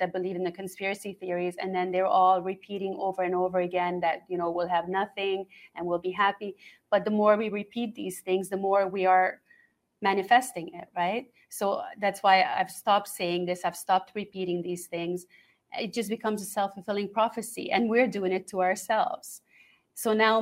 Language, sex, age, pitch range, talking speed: English, female, 30-49, 180-215 Hz, 190 wpm